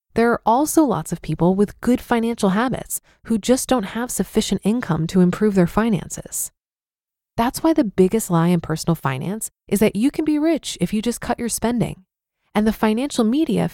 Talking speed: 190 wpm